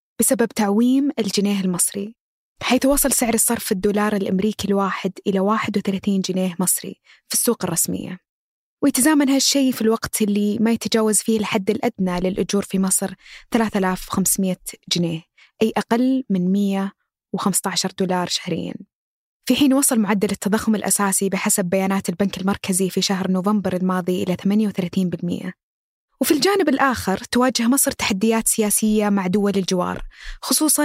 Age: 20-39